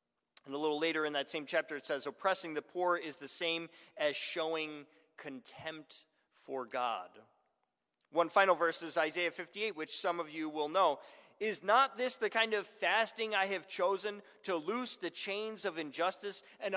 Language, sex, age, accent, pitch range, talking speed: English, male, 40-59, American, 160-210 Hz, 180 wpm